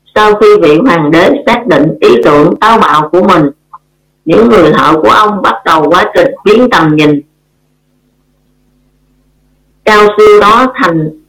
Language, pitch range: Vietnamese, 150-220 Hz